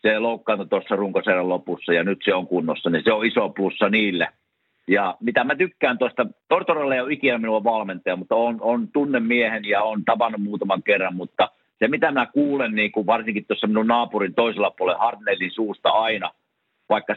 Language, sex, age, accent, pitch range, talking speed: Finnish, male, 50-69, native, 105-140 Hz, 190 wpm